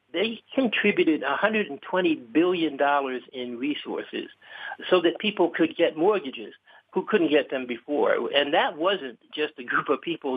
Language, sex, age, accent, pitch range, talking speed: English, male, 60-79, American, 135-185 Hz, 145 wpm